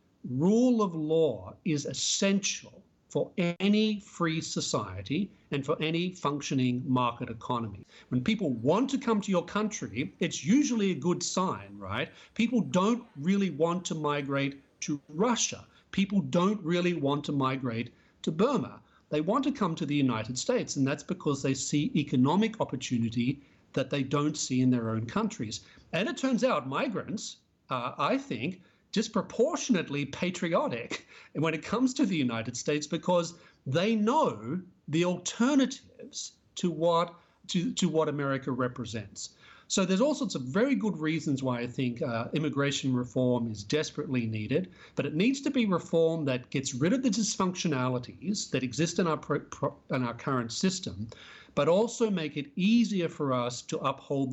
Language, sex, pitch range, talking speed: English, male, 130-195 Hz, 160 wpm